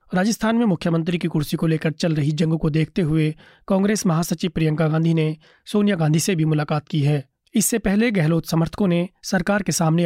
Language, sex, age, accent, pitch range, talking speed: Hindi, male, 30-49, native, 155-180 Hz, 195 wpm